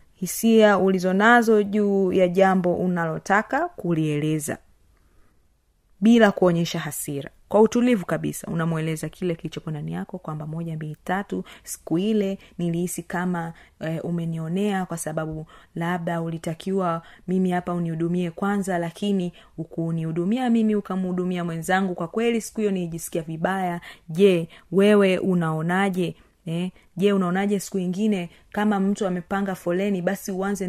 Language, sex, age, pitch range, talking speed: Swahili, female, 30-49, 170-210 Hz, 120 wpm